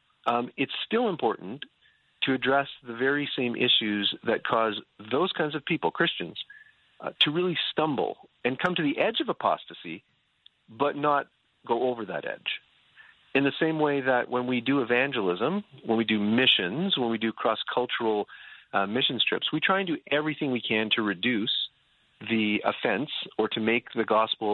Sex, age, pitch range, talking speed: male, 40-59, 110-145 Hz, 170 wpm